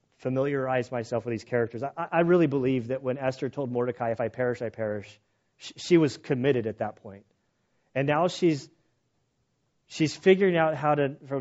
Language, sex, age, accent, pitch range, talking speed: English, male, 30-49, American, 130-170 Hz, 185 wpm